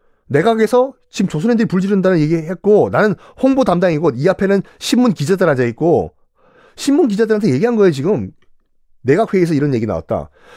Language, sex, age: Korean, male, 40-59